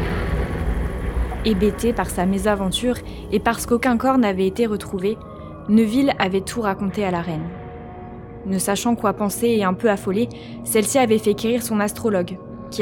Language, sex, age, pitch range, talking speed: French, female, 20-39, 185-220 Hz, 155 wpm